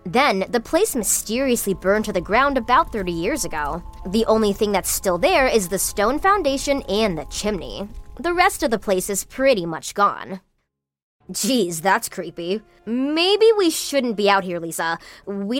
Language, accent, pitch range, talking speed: English, American, 190-280 Hz, 175 wpm